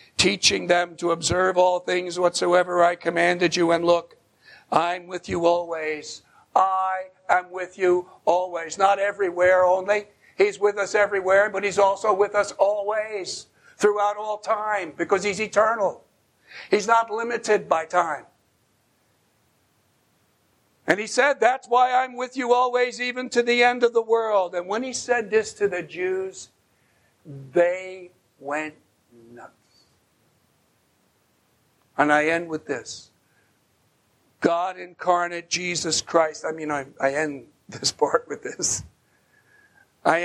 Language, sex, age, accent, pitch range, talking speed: English, male, 60-79, American, 165-200 Hz, 135 wpm